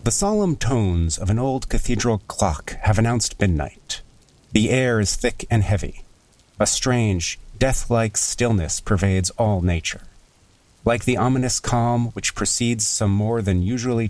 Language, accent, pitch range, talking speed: English, American, 95-115 Hz, 145 wpm